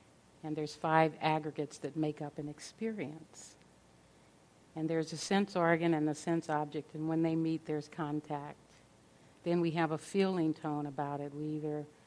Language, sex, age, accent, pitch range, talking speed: English, female, 50-69, American, 150-165 Hz, 170 wpm